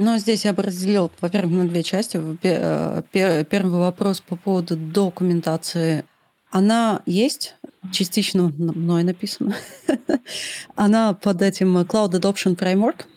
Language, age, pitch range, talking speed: Russian, 30-49, 170-200 Hz, 120 wpm